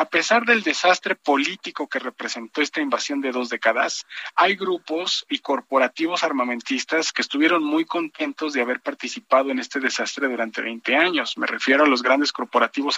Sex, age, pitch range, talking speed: male, 40-59, 135-180 Hz, 165 wpm